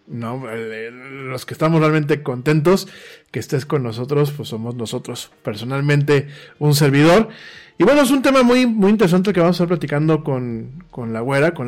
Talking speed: 175 wpm